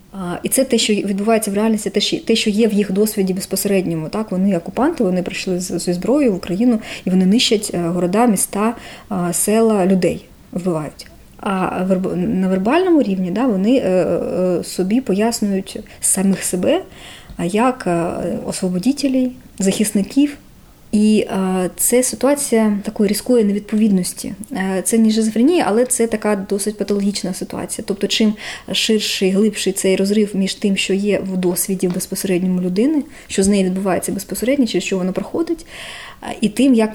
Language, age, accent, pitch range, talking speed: Ukrainian, 20-39, native, 190-225 Hz, 145 wpm